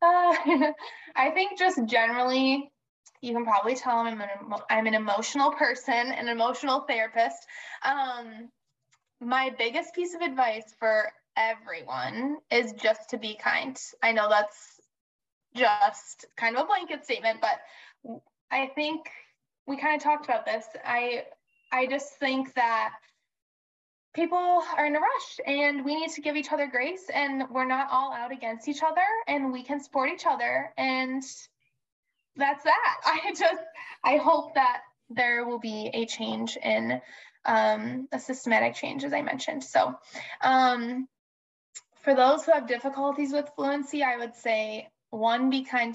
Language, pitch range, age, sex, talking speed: English, 230-295 Hz, 10-29, female, 155 wpm